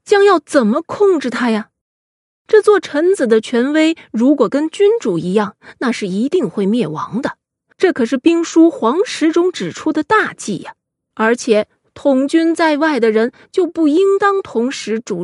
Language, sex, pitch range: Chinese, female, 210-310 Hz